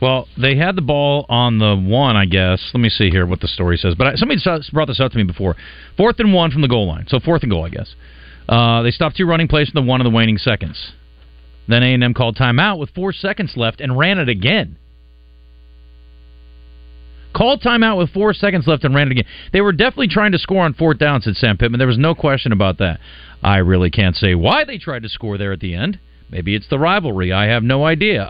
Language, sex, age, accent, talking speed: English, male, 40-59, American, 240 wpm